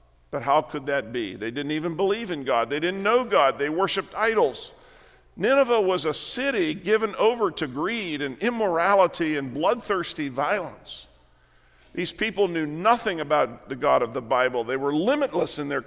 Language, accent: English, American